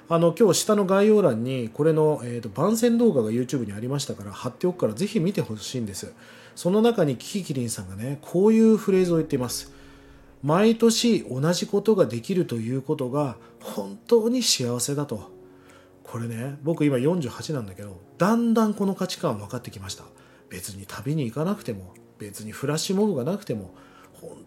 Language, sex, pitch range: Japanese, male, 120-195 Hz